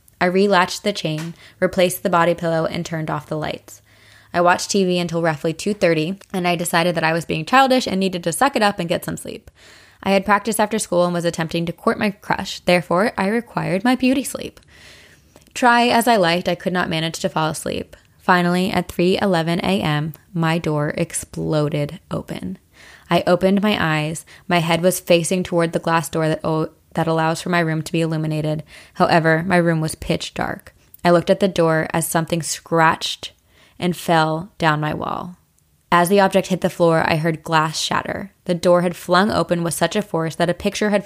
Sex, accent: female, American